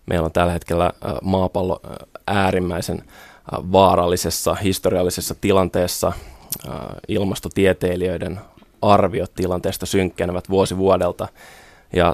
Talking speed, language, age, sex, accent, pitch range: 80 wpm, Finnish, 20-39, male, native, 90-100 Hz